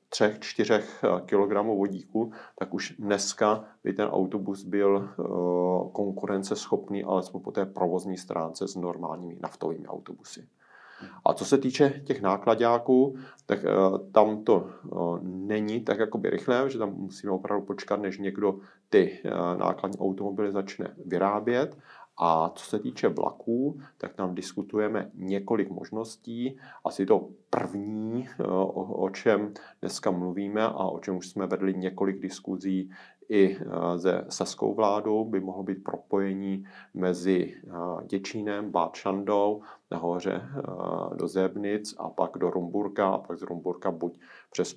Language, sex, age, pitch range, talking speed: Czech, male, 40-59, 95-105 Hz, 125 wpm